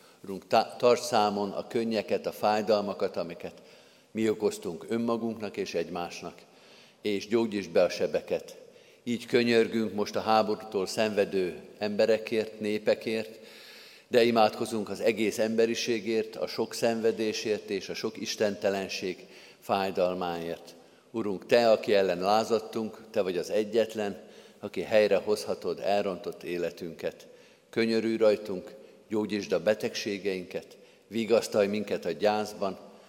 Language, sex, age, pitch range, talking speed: Hungarian, male, 50-69, 105-115 Hz, 110 wpm